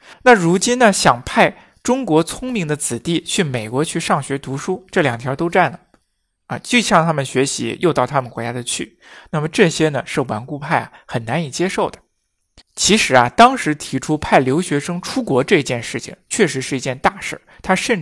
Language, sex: Chinese, male